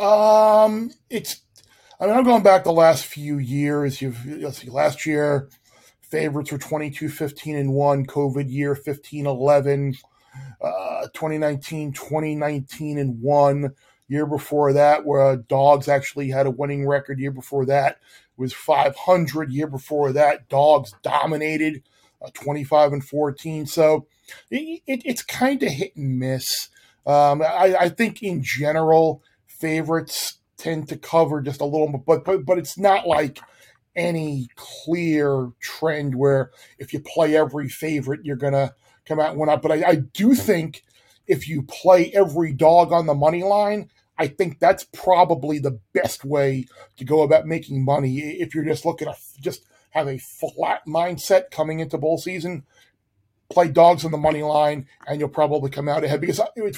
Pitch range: 140-165 Hz